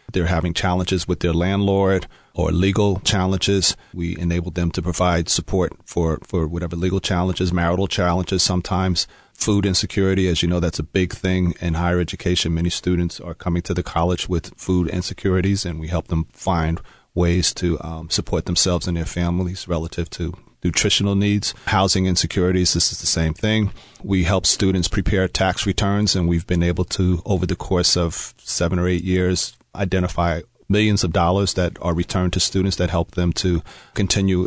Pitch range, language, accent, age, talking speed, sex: 85-95 Hz, English, American, 40-59, 180 wpm, male